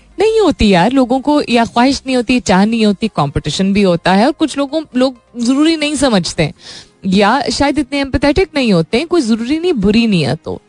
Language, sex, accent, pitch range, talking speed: Hindi, female, native, 180-270 Hz, 210 wpm